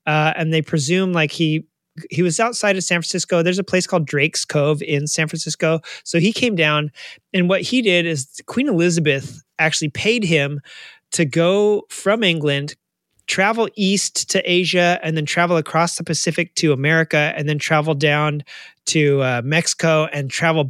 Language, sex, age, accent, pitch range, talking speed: English, male, 30-49, American, 150-185 Hz, 175 wpm